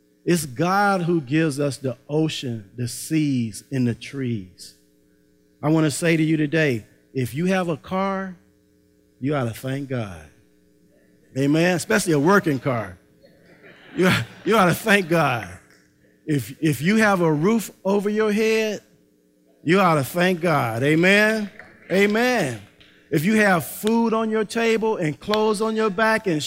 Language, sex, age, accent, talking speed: English, male, 50-69, American, 160 wpm